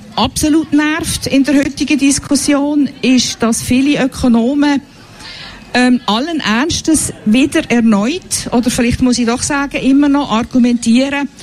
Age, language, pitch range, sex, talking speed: 50-69, German, 220-270 Hz, female, 125 wpm